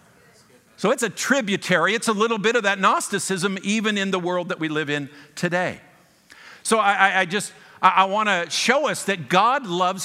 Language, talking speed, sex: English, 195 wpm, male